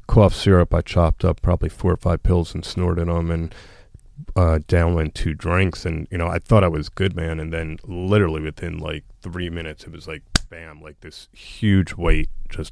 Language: English